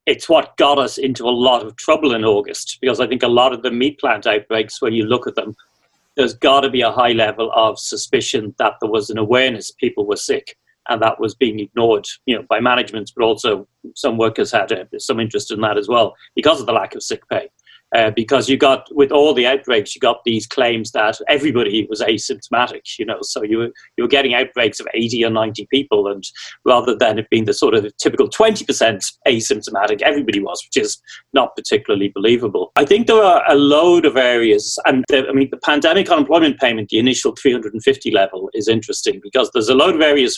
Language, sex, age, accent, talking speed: English, male, 40-59, British, 220 wpm